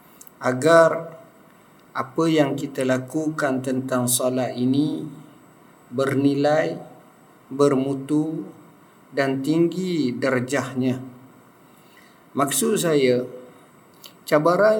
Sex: male